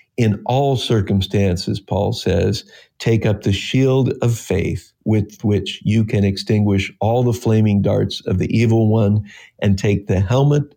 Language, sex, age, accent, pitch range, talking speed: English, male, 50-69, American, 100-130 Hz, 155 wpm